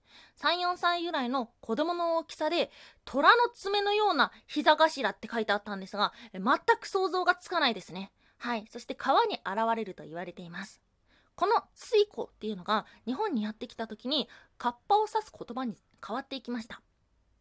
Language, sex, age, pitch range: Japanese, female, 20-39, 215-330 Hz